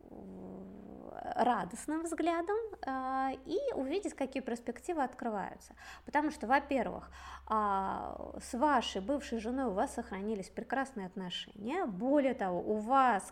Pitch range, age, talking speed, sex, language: 210-295 Hz, 20-39, 110 wpm, female, Russian